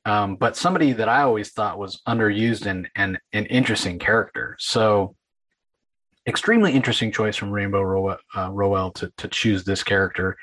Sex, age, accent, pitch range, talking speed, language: male, 30-49, American, 100-120 Hz, 155 wpm, English